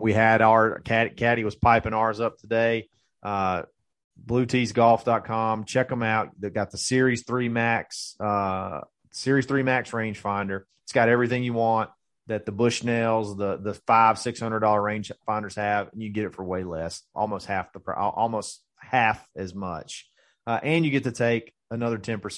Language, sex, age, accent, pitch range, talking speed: English, male, 30-49, American, 100-120 Hz, 175 wpm